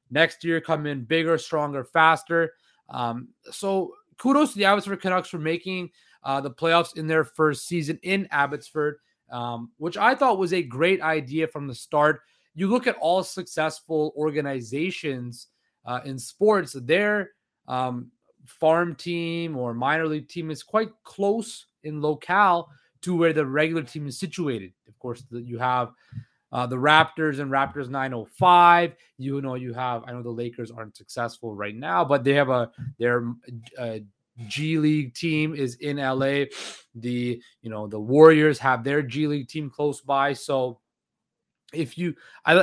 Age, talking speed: 20-39, 160 wpm